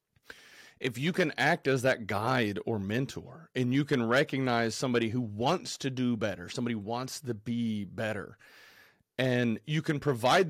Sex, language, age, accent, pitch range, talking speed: male, English, 30-49, American, 110-145 Hz, 160 wpm